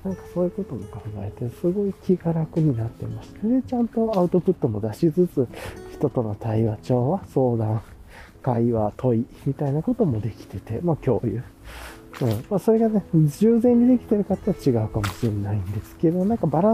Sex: male